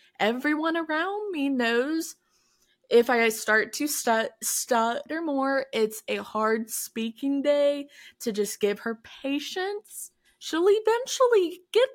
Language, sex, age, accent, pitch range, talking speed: English, female, 20-39, American, 220-285 Hz, 115 wpm